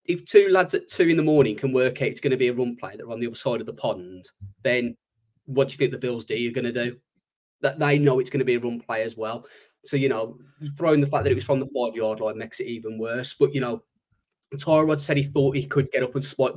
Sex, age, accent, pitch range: male, 20-39, British, 115-145 Hz